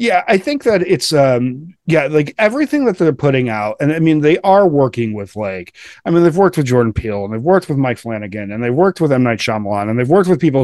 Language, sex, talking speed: English, male, 260 wpm